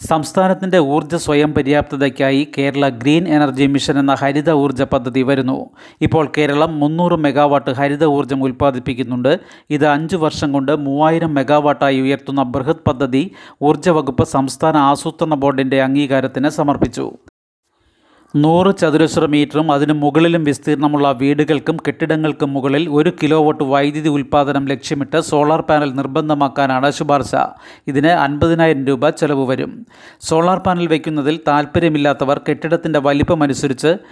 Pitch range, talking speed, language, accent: 140-160 Hz, 115 wpm, Malayalam, native